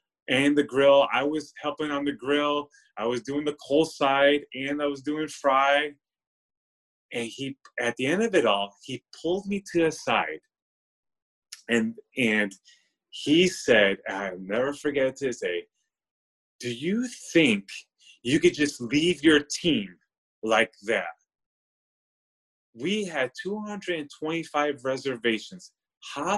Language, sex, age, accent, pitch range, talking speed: English, male, 30-49, American, 130-175 Hz, 135 wpm